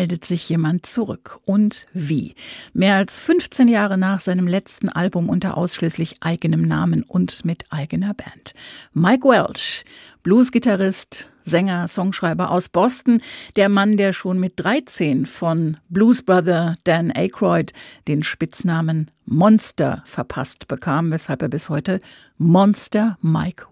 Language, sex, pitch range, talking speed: German, female, 170-205 Hz, 130 wpm